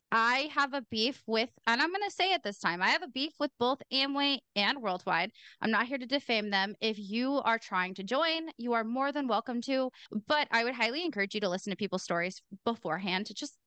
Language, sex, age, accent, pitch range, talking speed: English, female, 20-39, American, 210-275 Hz, 235 wpm